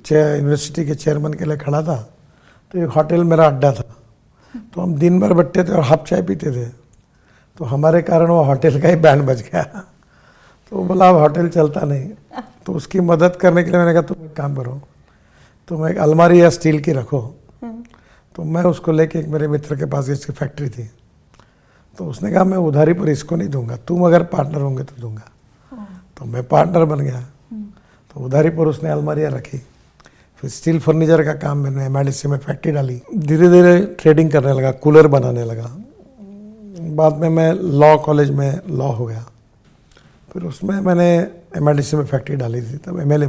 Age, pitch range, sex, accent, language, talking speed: 60-79, 135-170 Hz, male, native, Hindi, 190 wpm